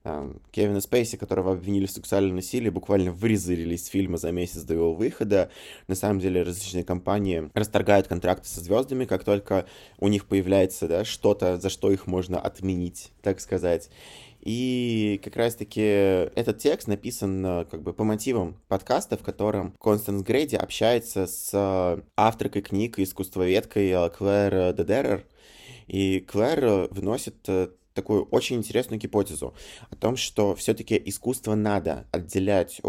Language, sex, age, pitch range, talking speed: Russian, male, 20-39, 95-110 Hz, 135 wpm